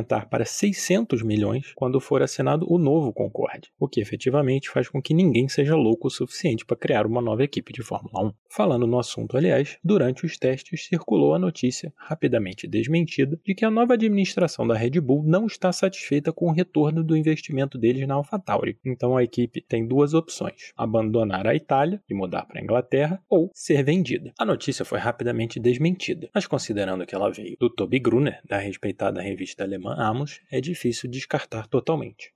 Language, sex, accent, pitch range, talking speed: Portuguese, male, Brazilian, 115-175 Hz, 180 wpm